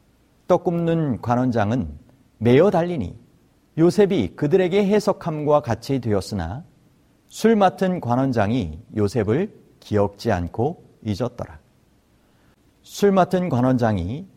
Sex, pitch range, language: male, 115-180 Hz, Korean